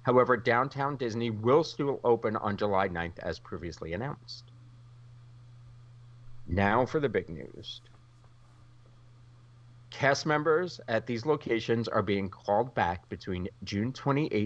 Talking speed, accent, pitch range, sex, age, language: 115 wpm, American, 105-130 Hz, male, 40-59, English